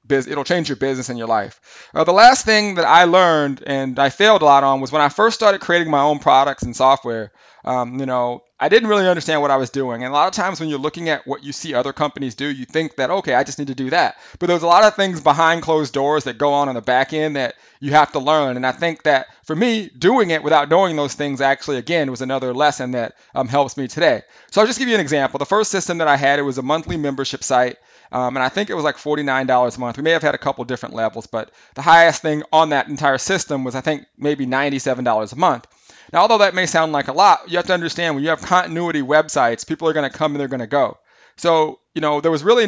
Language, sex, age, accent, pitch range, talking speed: English, male, 30-49, American, 135-170 Hz, 275 wpm